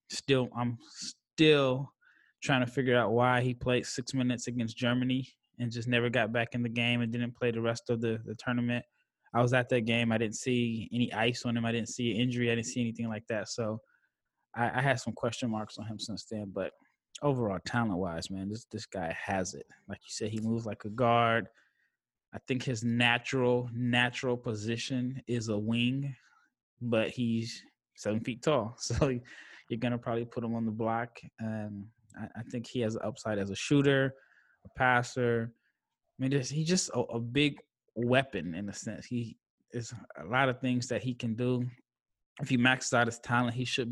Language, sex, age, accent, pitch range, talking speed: English, male, 20-39, American, 115-125 Hz, 200 wpm